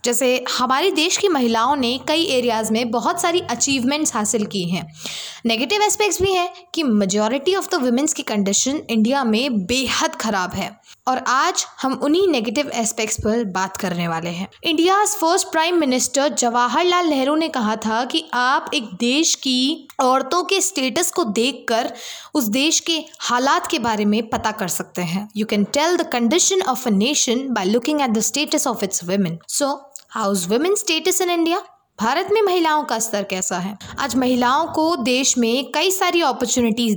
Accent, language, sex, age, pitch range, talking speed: native, Hindi, female, 20-39, 225-315 Hz, 175 wpm